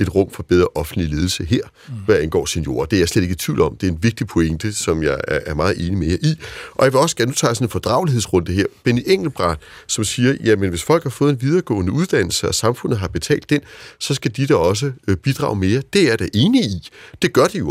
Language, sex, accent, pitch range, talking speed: Danish, male, native, 100-155 Hz, 245 wpm